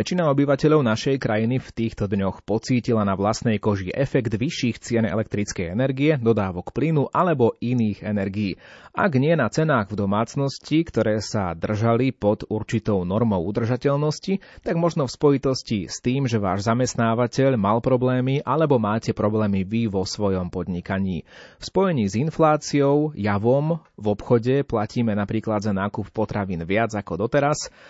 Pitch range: 100-130 Hz